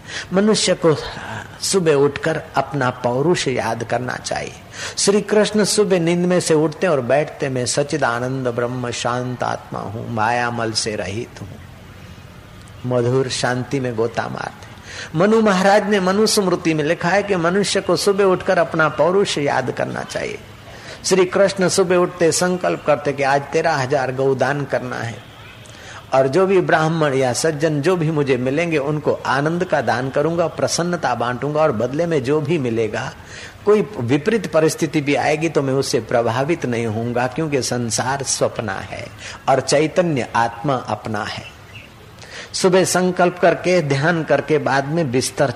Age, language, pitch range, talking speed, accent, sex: 50-69, Hindi, 120-170 Hz, 150 wpm, native, male